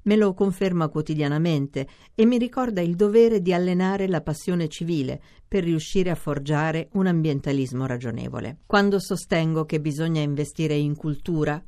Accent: native